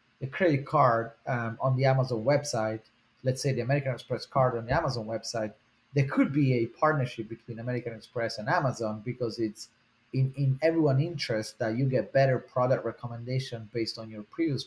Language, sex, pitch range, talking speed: English, male, 115-140 Hz, 180 wpm